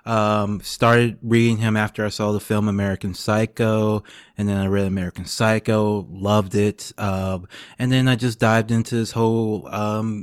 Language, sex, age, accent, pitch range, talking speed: English, male, 20-39, American, 100-115 Hz, 175 wpm